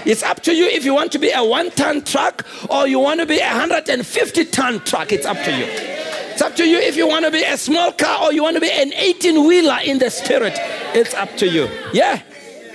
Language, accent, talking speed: English, South African, 240 wpm